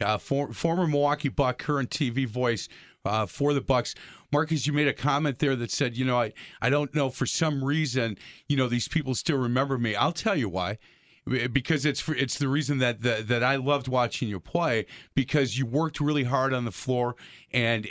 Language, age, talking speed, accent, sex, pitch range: English, 40-59, 210 wpm, American, male, 120-145 Hz